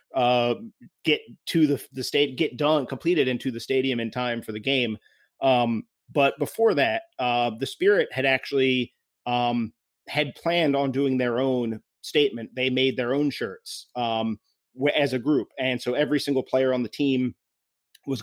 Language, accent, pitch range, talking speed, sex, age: English, American, 120-140 Hz, 170 wpm, male, 30-49